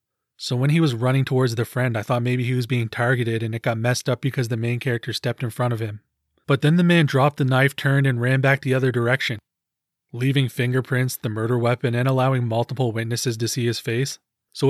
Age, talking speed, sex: 20-39, 235 wpm, male